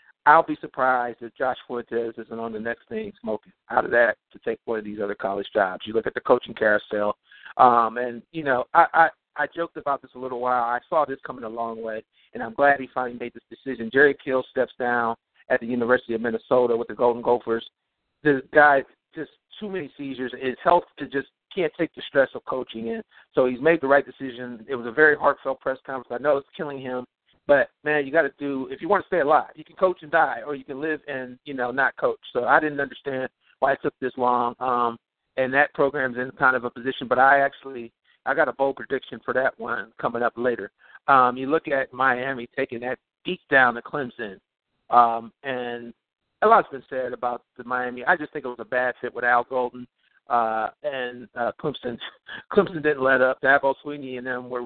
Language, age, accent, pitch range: English, 50-69, American, 120-140 Hz